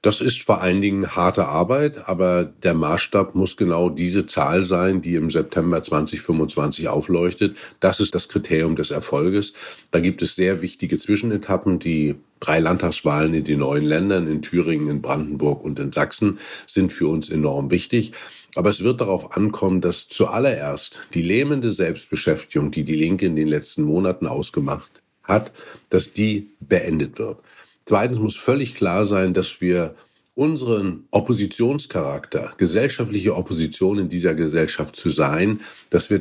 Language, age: German, 50-69